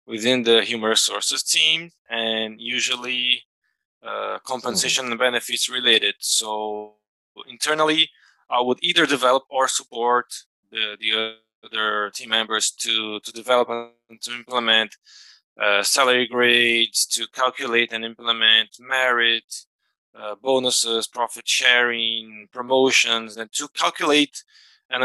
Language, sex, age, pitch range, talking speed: English, male, 20-39, 115-130 Hz, 115 wpm